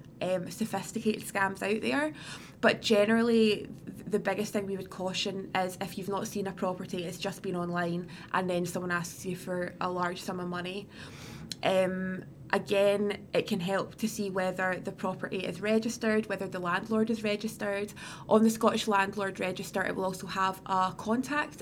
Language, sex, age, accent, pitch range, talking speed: English, female, 20-39, British, 185-210 Hz, 170 wpm